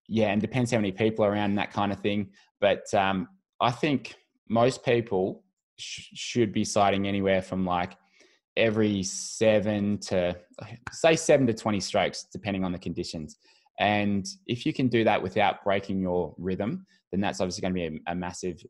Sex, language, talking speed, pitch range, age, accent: male, English, 185 wpm, 95-115 Hz, 20-39, Australian